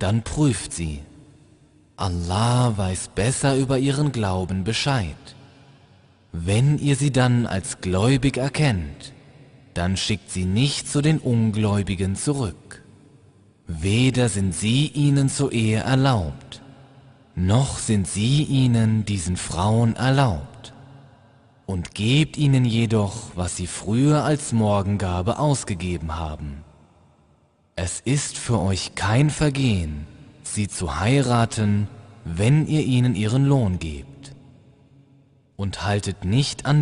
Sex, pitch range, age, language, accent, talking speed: male, 95-135 Hz, 30-49, German, German, 110 wpm